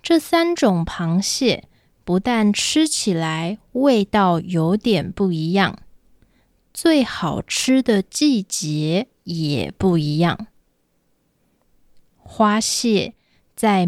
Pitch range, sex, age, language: 175-240 Hz, female, 20-39, Japanese